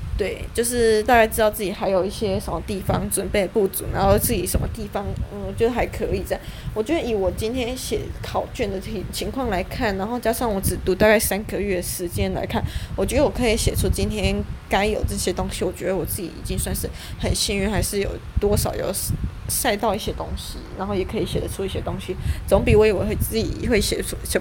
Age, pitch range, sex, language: 20-39, 180-230 Hz, female, Chinese